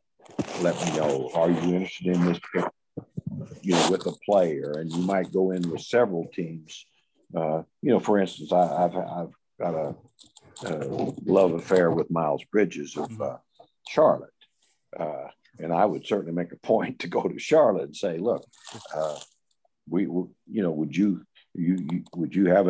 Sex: male